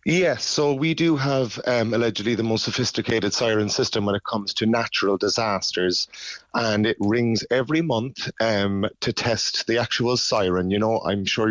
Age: 30-49